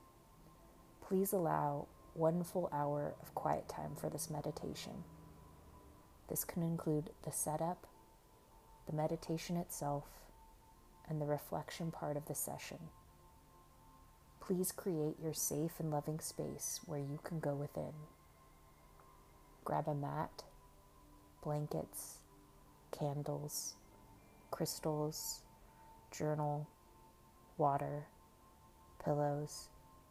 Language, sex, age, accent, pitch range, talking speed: English, female, 30-49, American, 110-155 Hz, 95 wpm